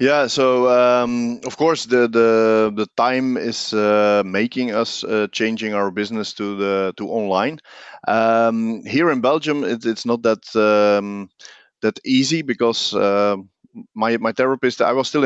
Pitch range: 100-120 Hz